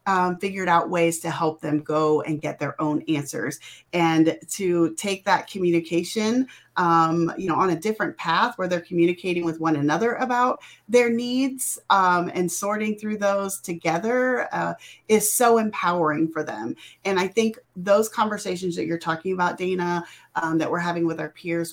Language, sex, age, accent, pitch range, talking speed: English, female, 30-49, American, 170-225 Hz, 175 wpm